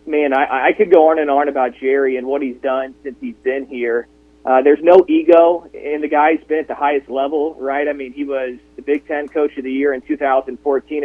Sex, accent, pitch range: male, American, 140-170 Hz